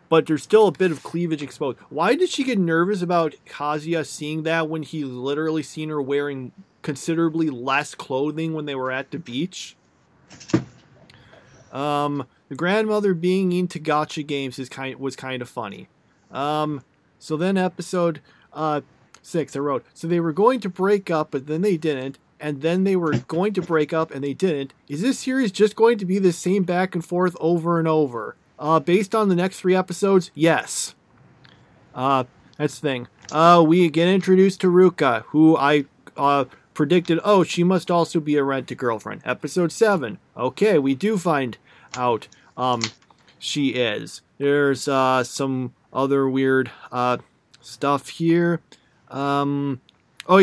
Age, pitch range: 40-59, 140-180 Hz